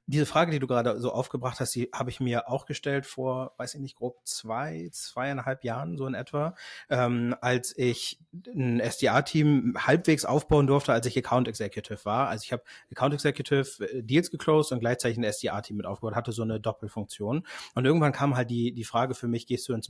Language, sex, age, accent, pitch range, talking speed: German, male, 30-49, German, 115-140 Hz, 200 wpm